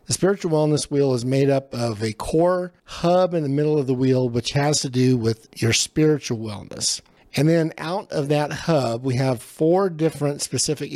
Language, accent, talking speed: English, American, 195 wpm